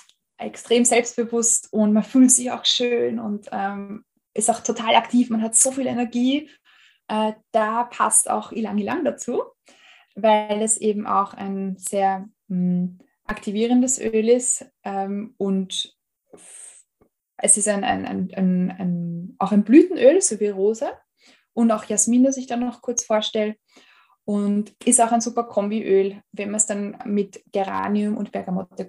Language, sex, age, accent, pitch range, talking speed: German, female, 20-39, German, 200-245 Hz, 155 wpm